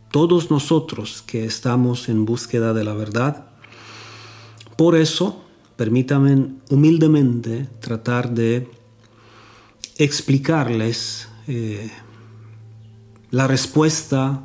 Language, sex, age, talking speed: Romanian, male, 40-59, 80 wpm